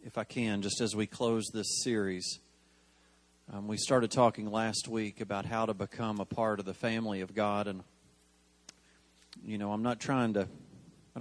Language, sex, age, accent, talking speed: English, male, 40-59, American, 180 wpm